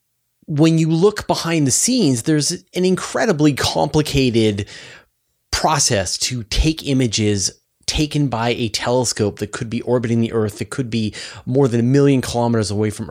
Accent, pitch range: American, 100-135 Hz